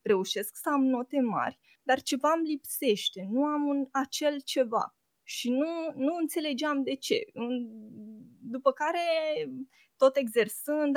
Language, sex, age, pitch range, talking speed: Romanian, female, 20-39, 215-275 Hz, 125 wpm